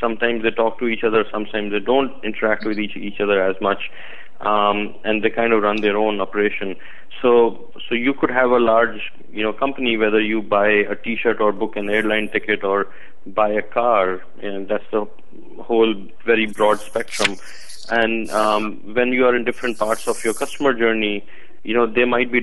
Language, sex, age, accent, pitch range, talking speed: English, male, 20-39, Indian, 105-120 Hz, 200 wpm